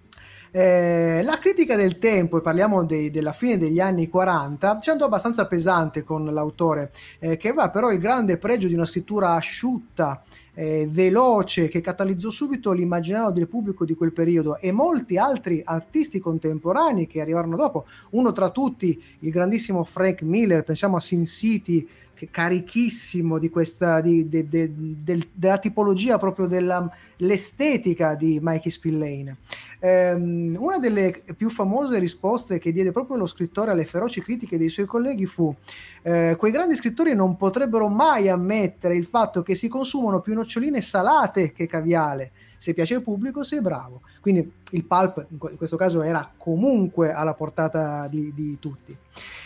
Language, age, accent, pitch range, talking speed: Italian, 30-49, native, 165-210 Hz, 155 wpm